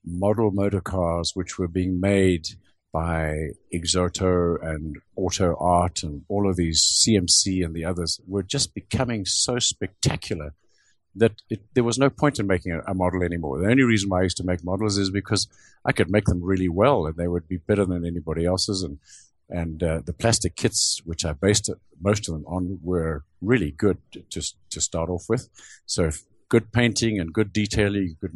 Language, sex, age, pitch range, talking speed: English, male, 50-69, 90-115 Hz, 195 wpm